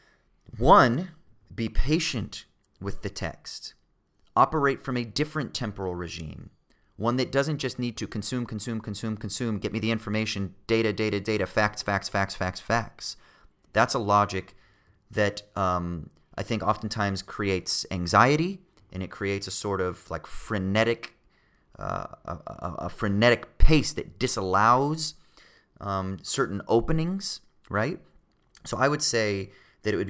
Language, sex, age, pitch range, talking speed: English, male, 30-49, 90-115 Hz, 140 wpm